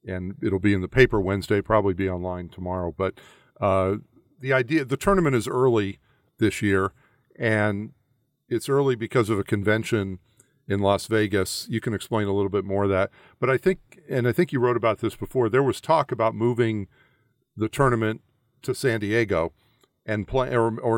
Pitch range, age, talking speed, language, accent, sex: 100-125 Hz, 50-69, 185 wpm, English, American, male